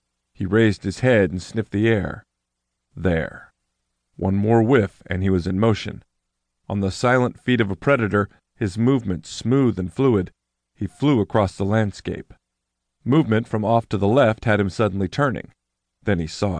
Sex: male